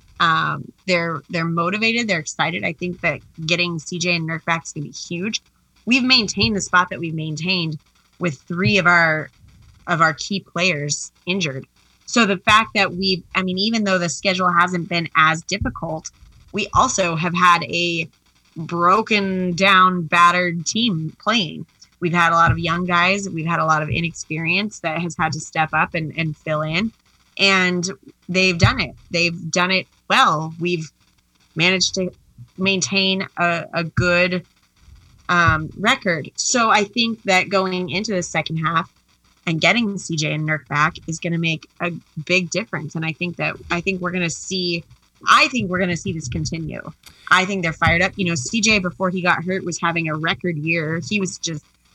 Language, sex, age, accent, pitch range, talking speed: English, female, 20-39, American, 160-185 Hz, 185 wpm